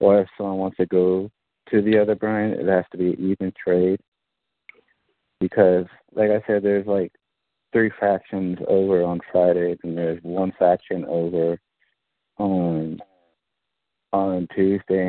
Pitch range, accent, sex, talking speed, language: 85-100 Hz, American, male, 140 wpm, English